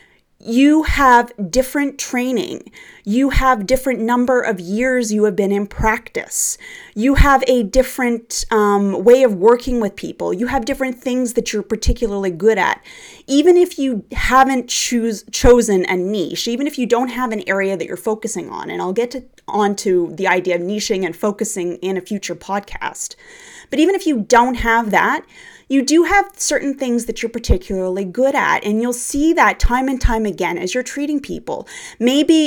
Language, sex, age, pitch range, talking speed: English, female, 30-49, 200-255 Hz, 185 wpm